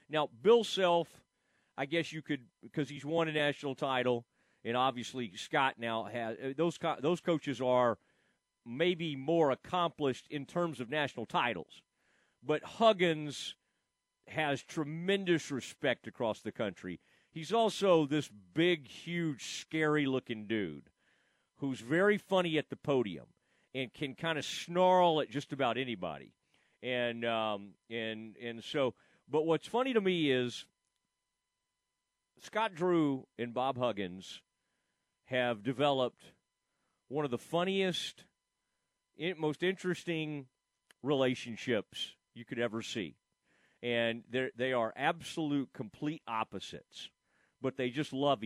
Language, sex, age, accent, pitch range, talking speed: English, male, 40-59, American, 120-160 Hz, 125 wpm